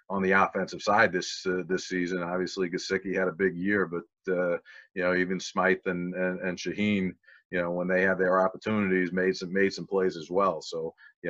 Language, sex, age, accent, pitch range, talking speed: English, male, 40-59, American, 90-100 Hz, 210 wpm